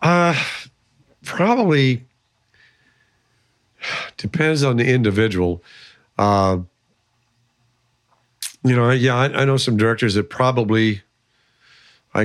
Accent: American